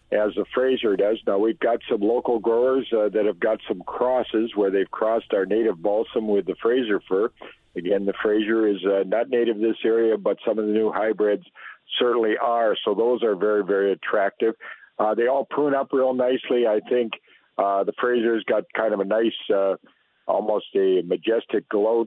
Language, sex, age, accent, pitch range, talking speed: English, male, 50-69, American, 105-135 Hz, 195 wpm